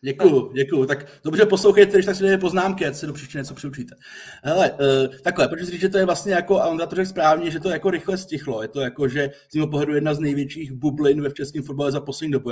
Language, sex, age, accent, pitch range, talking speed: Czech, male, 30-49, native, 135-175 Hz, 260 wpm